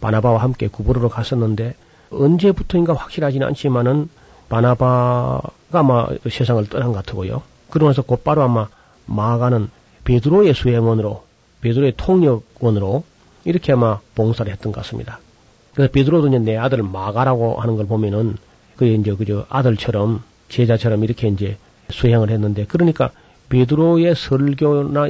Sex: male